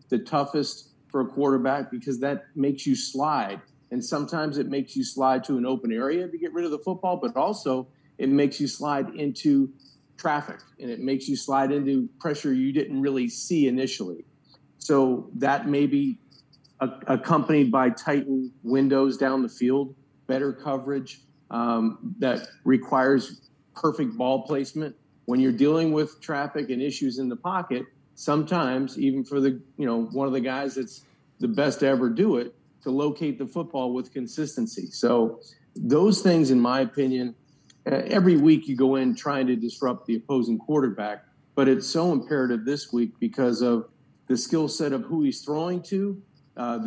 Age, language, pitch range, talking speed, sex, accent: 40-59, English, 130-150 Hz, 170 wpm, male, American